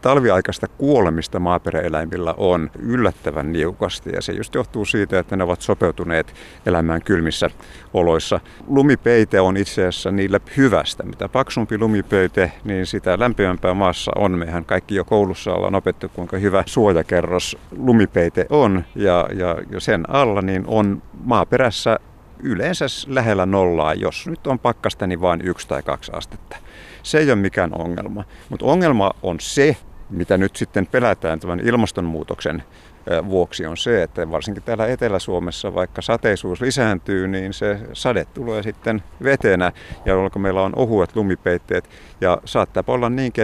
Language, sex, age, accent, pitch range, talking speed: Finnish, male, 50-69, native, 85-110 Hz, 145 wpm